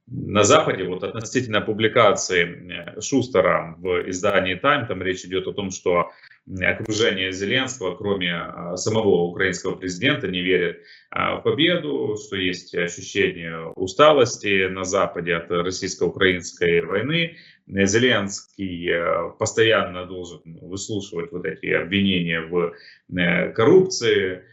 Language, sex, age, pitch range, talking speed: Russian, male, 30-49, 90-120 Hz, 105 wpm